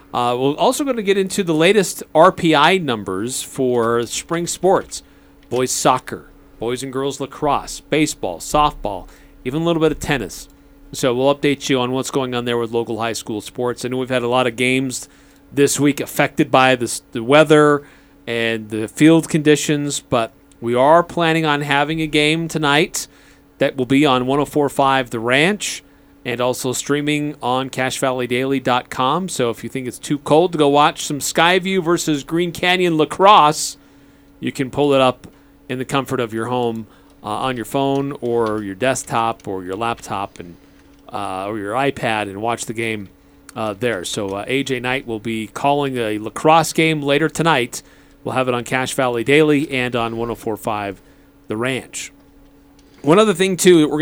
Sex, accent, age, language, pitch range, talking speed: male, American, 40-59, English, 120-150 Hz, 175 wpm